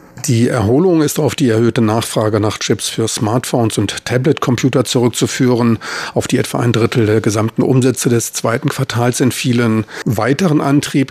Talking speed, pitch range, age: 150 wpm, 115-130 Hz, 50-69